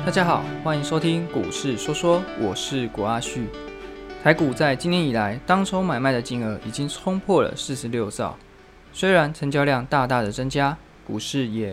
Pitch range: 115-160 Hz